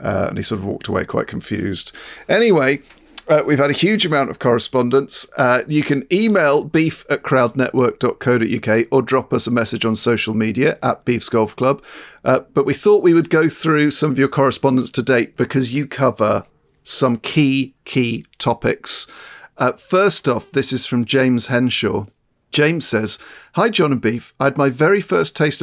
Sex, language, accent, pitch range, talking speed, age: male, English, British, 115-150 Hz, 180 wpm, 50-69